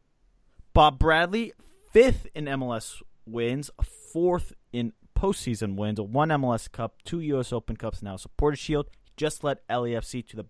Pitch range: 105-150 Hz